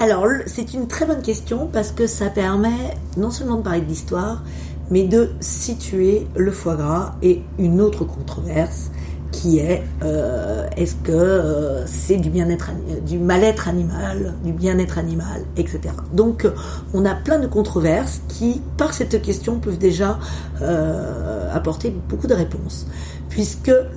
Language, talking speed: French, 150 wpm